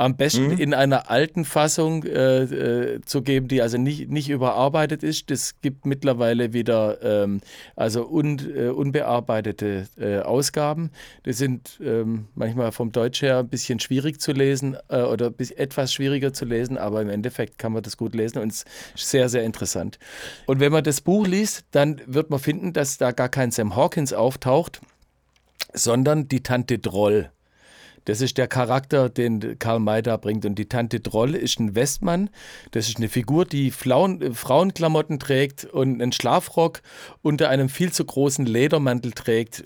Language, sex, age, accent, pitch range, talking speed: German, male, 40-59, German, 120-145 Hz, 175 wpm